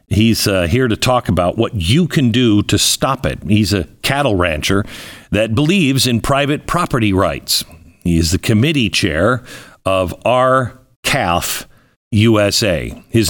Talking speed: 145 wpm